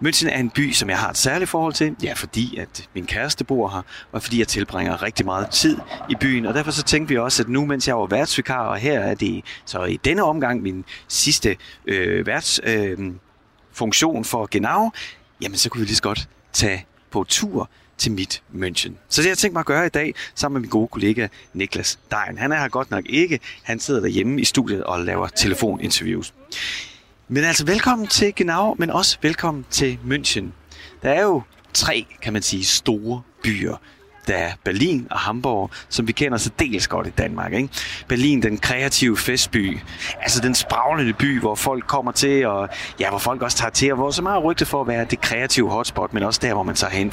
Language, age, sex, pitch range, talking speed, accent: Danish, 30-49, male, 105-140 Hz, 215 wpm, native